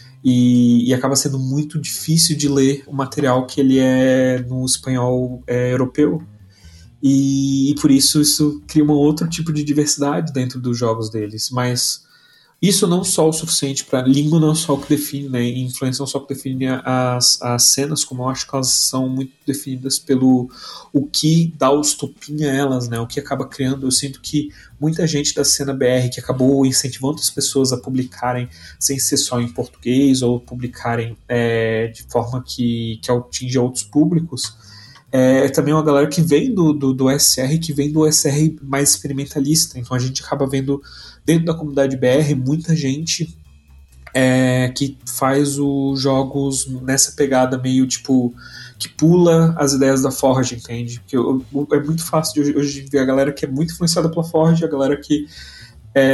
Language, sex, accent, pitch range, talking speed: Portuguese, male, Brazilian, 125-145 Hz, 185 wpm